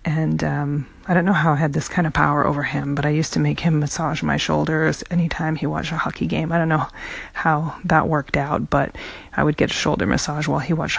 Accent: American